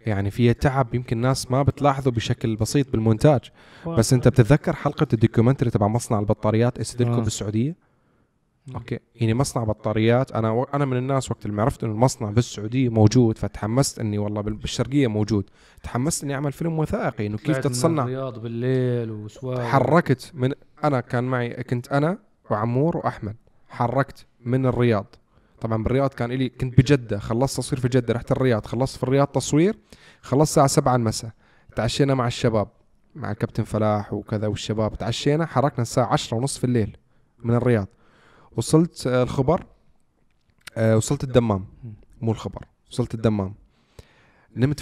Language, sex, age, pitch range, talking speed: Arabic, male, 20-39, 115-135 Hz, 145 wpm